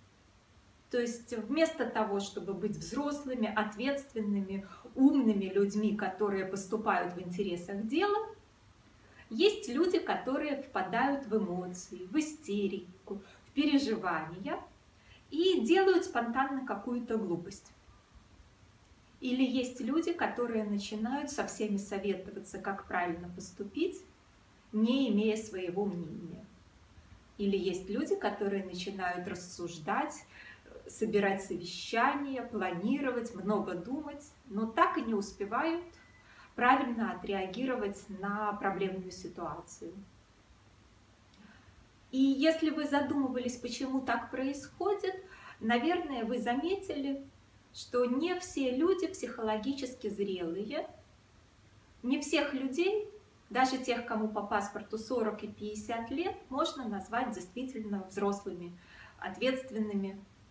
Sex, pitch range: female, 195-270 Hz